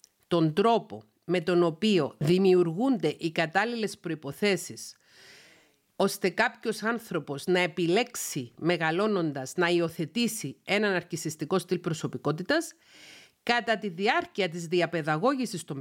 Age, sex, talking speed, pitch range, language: 40-59, female, 105 wpm, 165-220 Hz, Greek